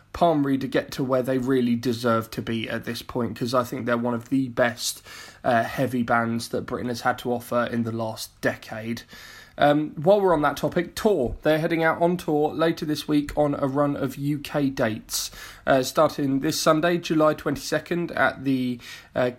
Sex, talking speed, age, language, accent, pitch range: male, 200 wpm, 20-39, English, British, 130-160 Hz